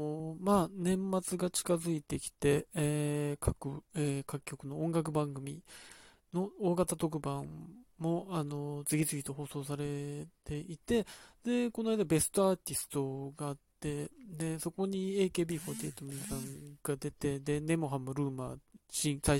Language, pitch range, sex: Japanese, 145-205 Hz, male